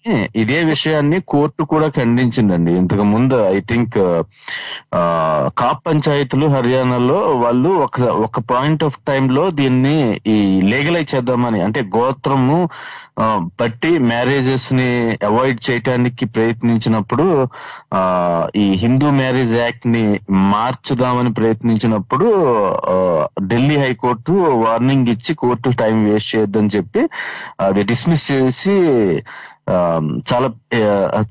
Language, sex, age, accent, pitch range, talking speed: Telugu, male, 30-49, native, 110-130 Hz, 100 wpm